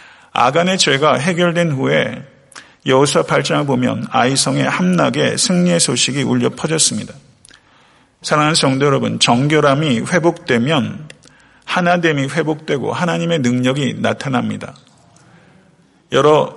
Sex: male